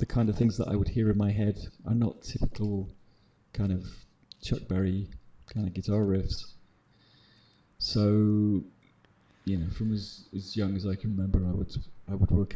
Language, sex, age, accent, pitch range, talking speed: English, male, 30-49, British, 100-115 Hz, 180 wpm